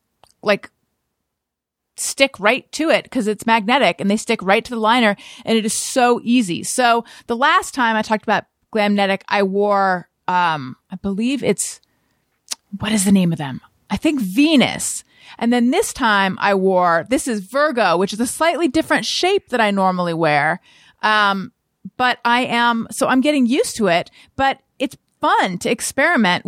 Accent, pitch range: American, 200-275 Hz